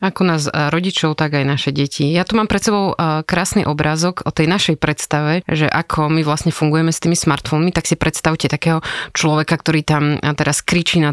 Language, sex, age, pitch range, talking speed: Slovak, female, 20-39, 155-185 Hz, 195 wpm